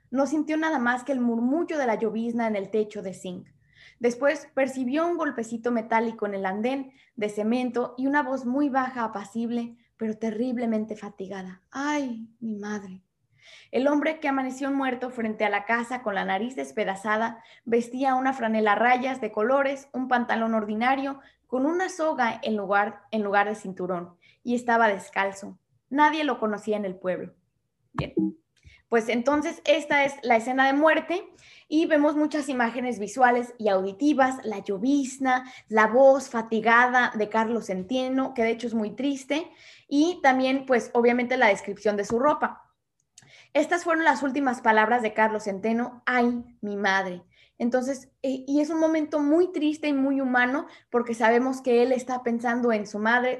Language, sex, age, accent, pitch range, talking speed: Spanish, female, 20-39, Mexican, 215-270 Hz, 165 wpm